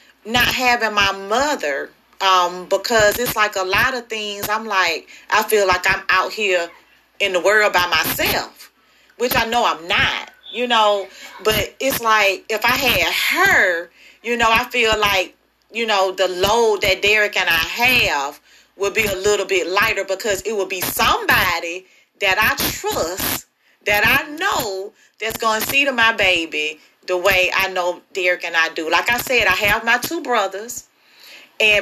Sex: female